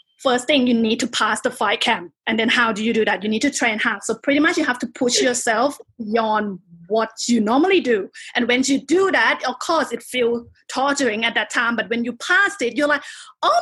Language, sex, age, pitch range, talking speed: English, female, 20-39, 230-330 Hz, 240 wpm